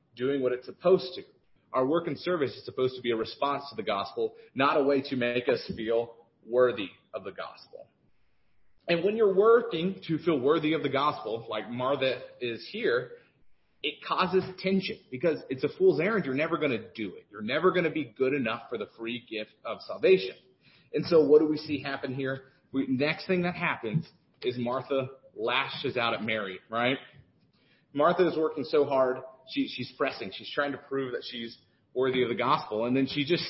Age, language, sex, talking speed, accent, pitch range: 30-49, English, male, 200 wpm, American, 130-175 Hz